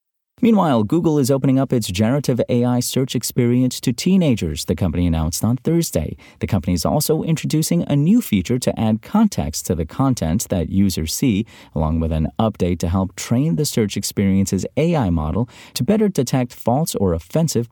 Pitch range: 90-130 Hz